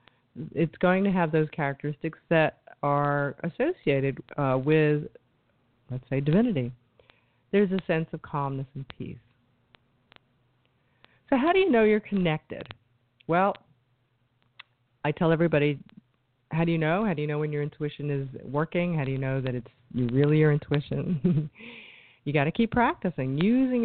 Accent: American